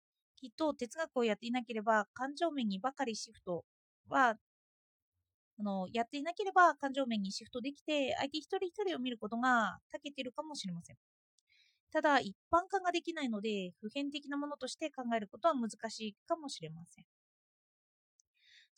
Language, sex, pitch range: Japanese, female, 210-290 Hz